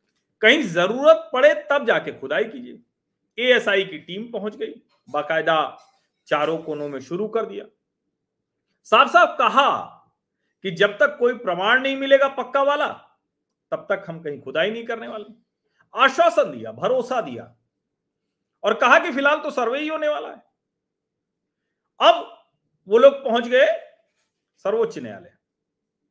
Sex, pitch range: male, 195-285 Hz